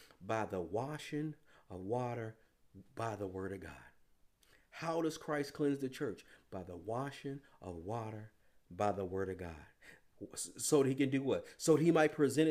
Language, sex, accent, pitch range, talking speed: English, male, American, 110-150 Hz, 175 wpm